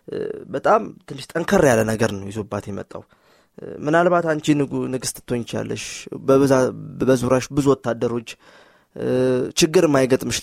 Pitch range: 120-170 Hz